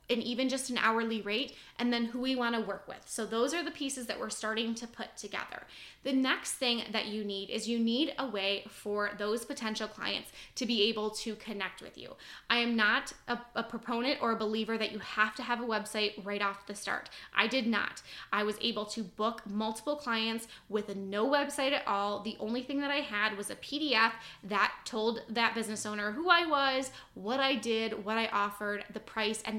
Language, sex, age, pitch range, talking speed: English, female, 10-29, 215-245 Hz, 215 wpm